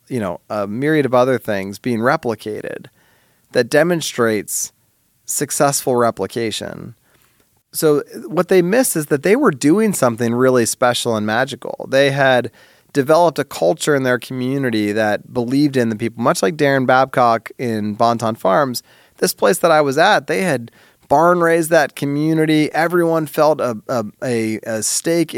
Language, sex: English, male